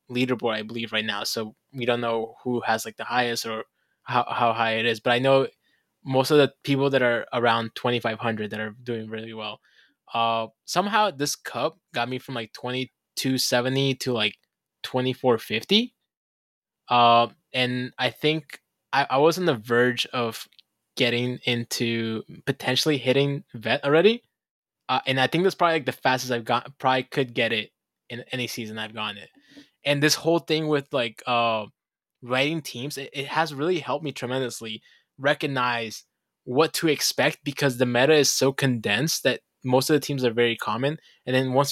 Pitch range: 115-140 Hz